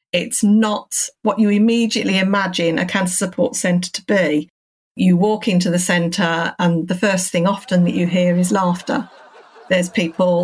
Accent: British